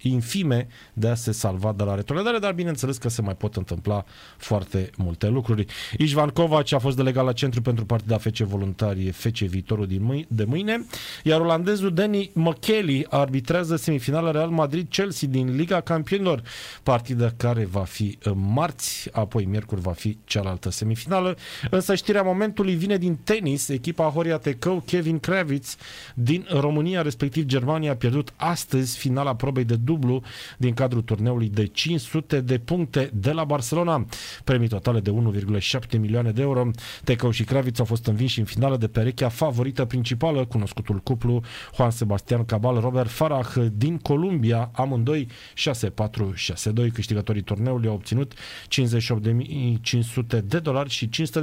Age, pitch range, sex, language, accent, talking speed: 30-49, 110-150 Hz, male, Romanian, native, 155 wpm